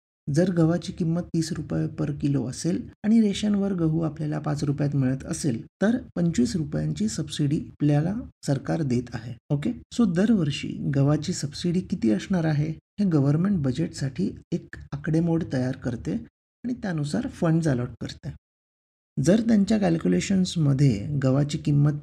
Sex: male